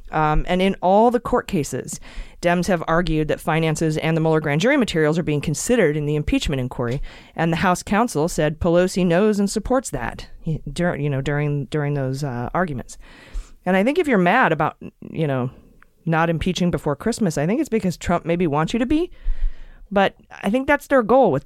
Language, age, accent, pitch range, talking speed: English, 30-49, American, 145-195 Hz, 205 wpm